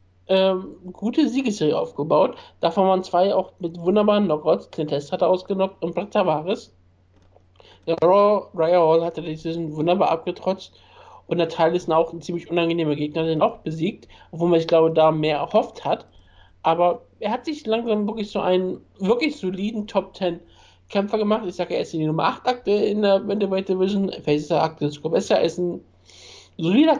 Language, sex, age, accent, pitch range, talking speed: German, male, 60-79, German, 155-190 Hz, 180 wpm